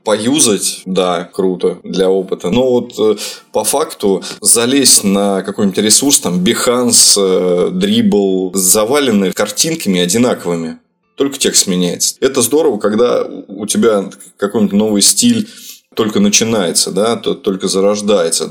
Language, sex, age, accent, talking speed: Russian, male, 20-39, native, 125 wpm